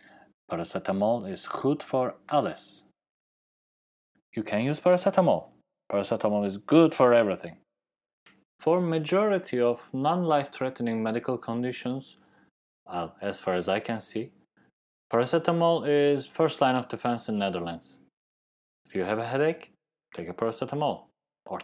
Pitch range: 105-150 Hz